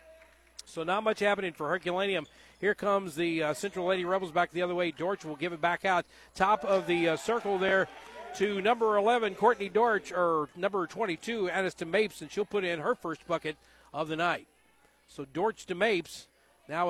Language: English